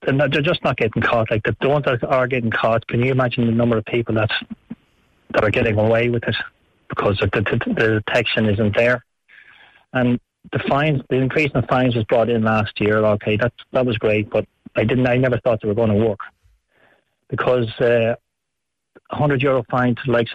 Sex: male